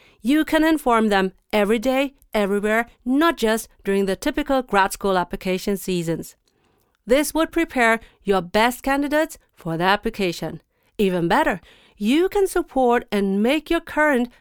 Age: 40-59